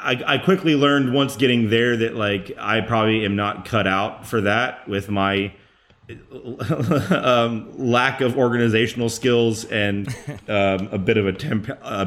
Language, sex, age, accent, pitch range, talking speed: English, male, 30-49, American, 100-120 Hz, 160 wpm